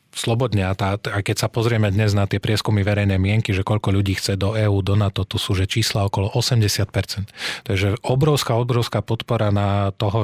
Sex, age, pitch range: male, 30-49, 100-115 Hz